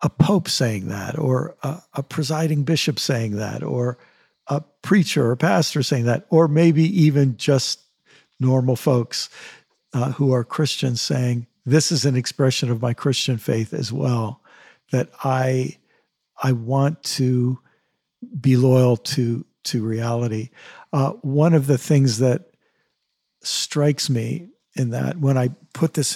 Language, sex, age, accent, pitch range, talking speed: English, male, 50-69, American, 125-145 Hz, 145 wpm